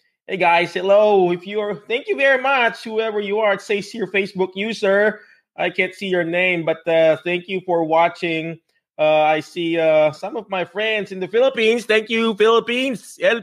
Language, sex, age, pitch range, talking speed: English, male, 20-39, 155-225 Hz, 190 wpm